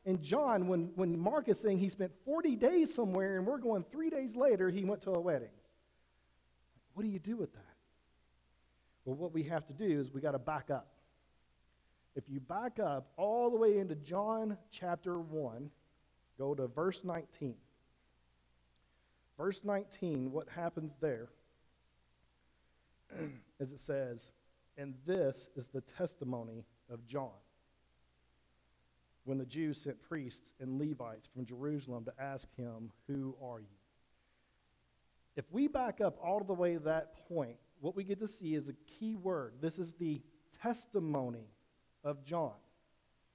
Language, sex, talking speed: English, male, 155 wpm